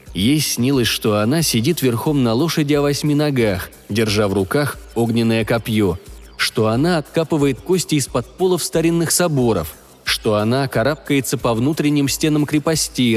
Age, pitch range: 20-39, 110-145 Hz